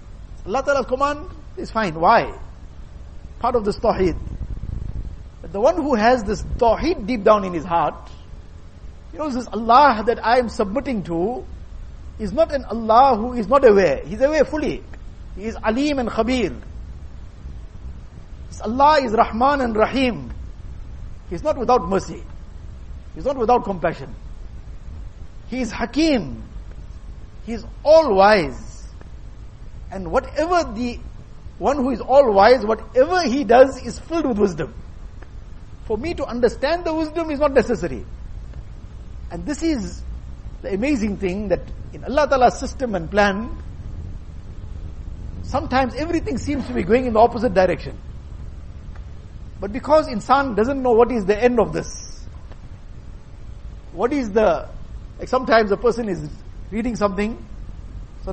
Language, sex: English, male